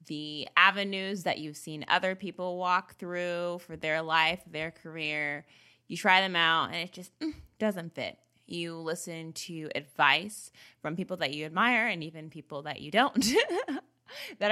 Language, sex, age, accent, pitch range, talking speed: English, female, 20-39, American, 160-205 Hz, 160 wpm